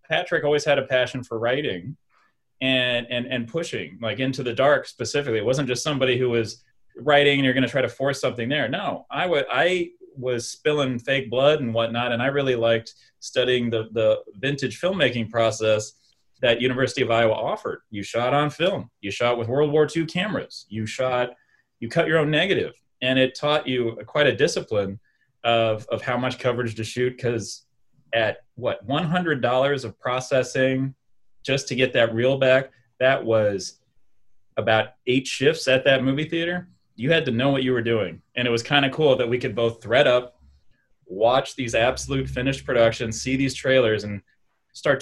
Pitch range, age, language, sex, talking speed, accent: 115-145 Hz, 30-49, English, male, 185 wpm, American